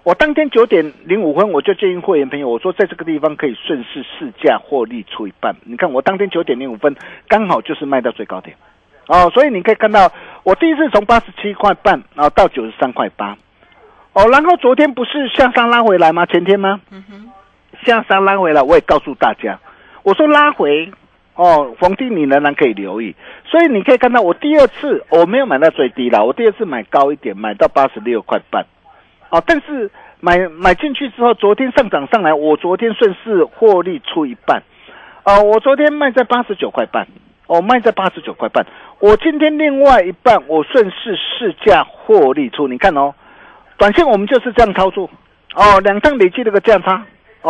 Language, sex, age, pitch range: Chinese, male, 50-69, 160-265 Hz